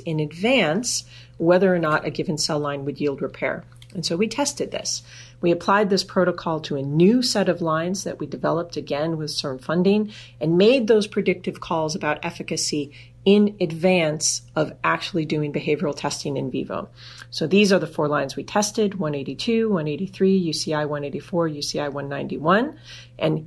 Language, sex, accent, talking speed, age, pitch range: English, female, American, 165 wpm, 40-59, 145-185 Hz